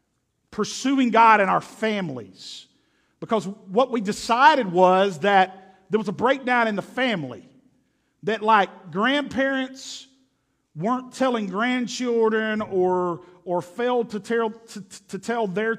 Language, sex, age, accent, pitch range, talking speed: English, male, 50-69, American, 190-235 Hz, 125 wpm